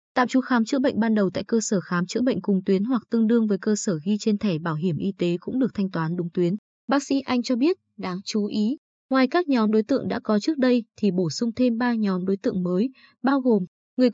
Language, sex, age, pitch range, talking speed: Vietnamese, female, 20-39, 195-245 Hz, 265 wpm